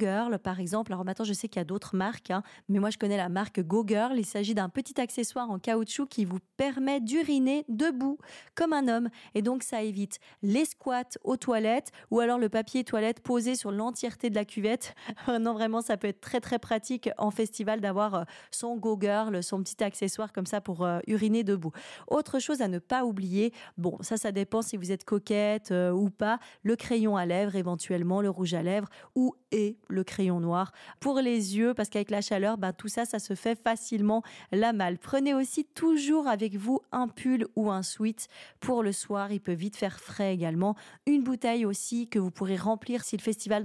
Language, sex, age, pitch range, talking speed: French, female, 20-39, 195-235 Hz, 210 wpm